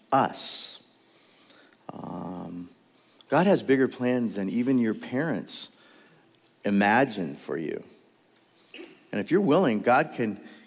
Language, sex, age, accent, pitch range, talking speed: English, male, 40-59, American, 100-135 Hz, 105 wpm